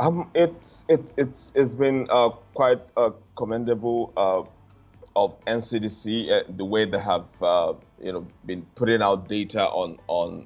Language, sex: English, male